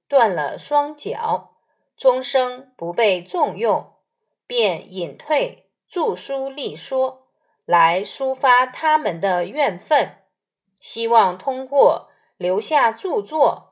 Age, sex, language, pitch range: 20-39, female, Chinese, 195-310 Hz